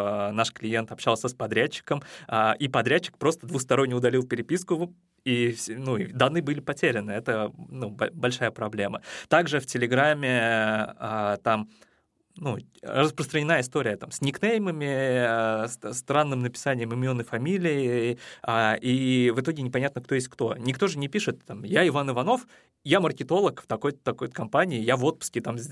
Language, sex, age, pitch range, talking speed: Russian, male, 20-39, 120-155 Hz, 145 wpm